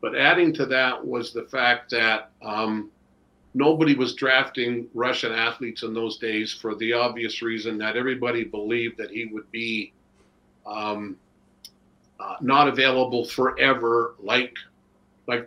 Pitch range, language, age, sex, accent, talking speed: 110-130 Hz, English, 50-69, male, American, 135 wpm